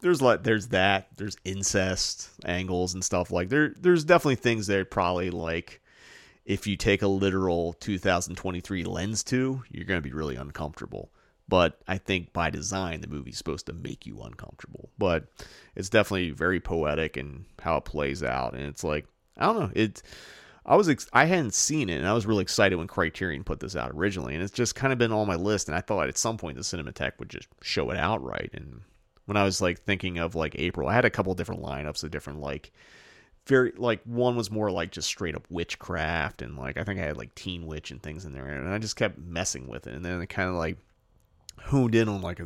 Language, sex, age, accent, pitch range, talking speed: English, male, 30-49, American, 80-105 Hz, 225 wpm